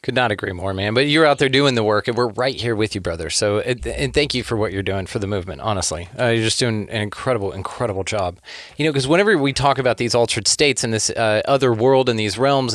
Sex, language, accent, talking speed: male, English, American, 270 wpm